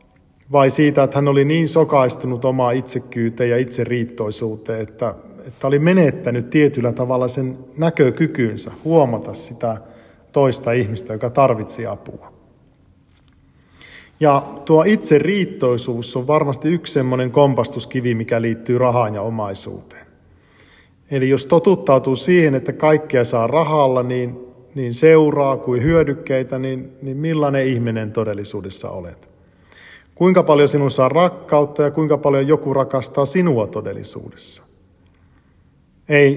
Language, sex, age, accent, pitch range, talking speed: Finnish, male, 50-69, native, 120-145 Hz, 120 wpm